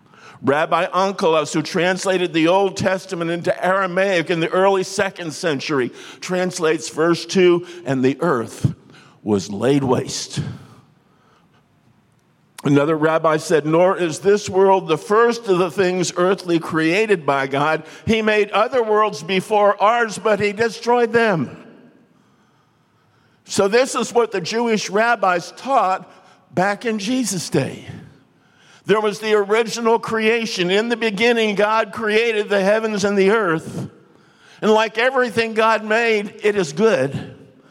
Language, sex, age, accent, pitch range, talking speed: English, male, 60-79, American, 140-210 Hz, 135 wpm